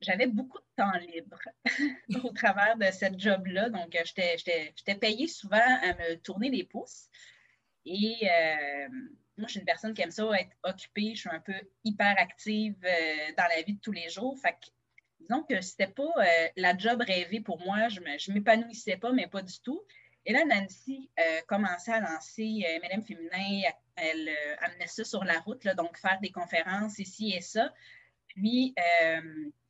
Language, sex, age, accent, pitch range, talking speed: French, female, 30-49, Canadian, 175-225 Hz, 185 wpm